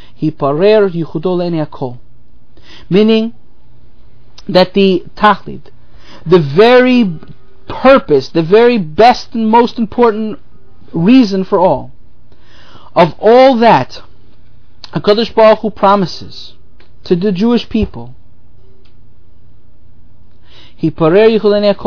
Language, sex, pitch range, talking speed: English, male, 120-205 Hz, 75 wpm